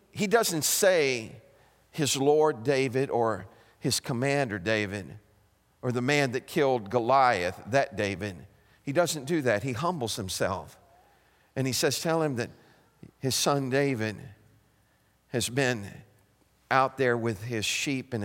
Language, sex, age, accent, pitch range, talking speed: English, male, 50-69, American, 115-170 Hz, 140 wpm